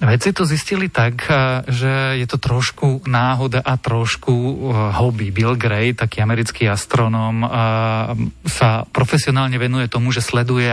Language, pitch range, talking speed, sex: Slovak, 110-130 Hz, 130 wpm, male